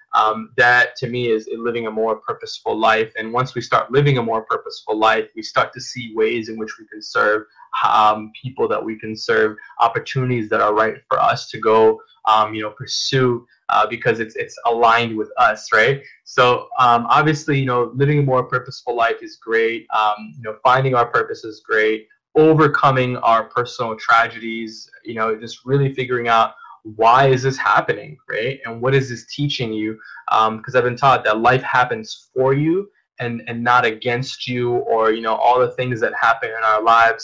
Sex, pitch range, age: male, 115-145 Hz, 20-39